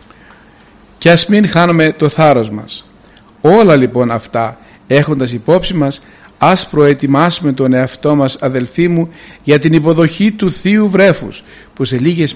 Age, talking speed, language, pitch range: 50-69, 140 wpm, Greek, 135-175 Hz